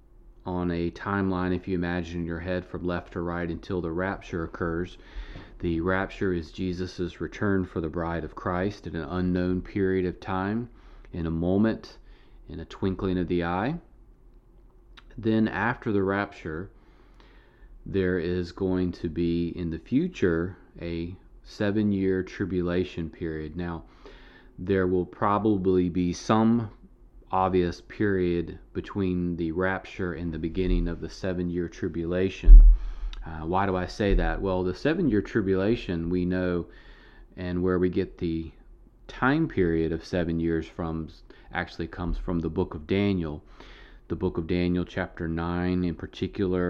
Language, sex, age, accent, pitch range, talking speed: English, male, 30-49, American, 85-95 Hz, 145 wpm